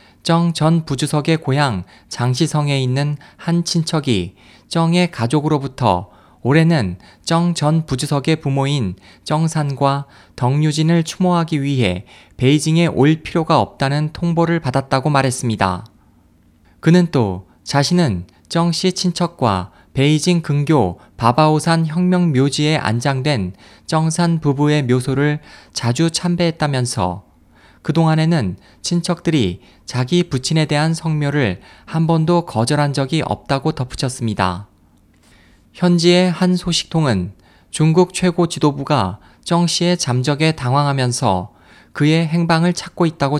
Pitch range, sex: 115-165 Hz, male